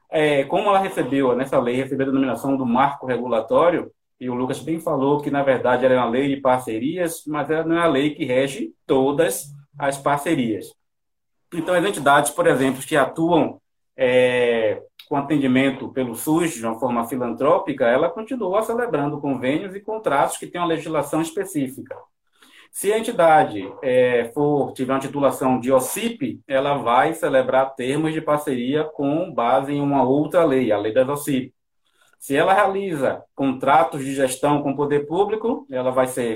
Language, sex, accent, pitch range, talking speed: Portuguese, male, Brazilian, 130-170 Hz, 165 wpm